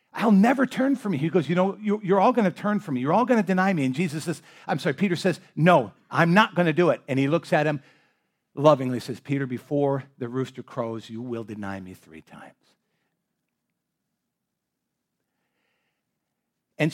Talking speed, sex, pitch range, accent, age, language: 195 wpm, male, 135-185 Hz, American, 50-69, English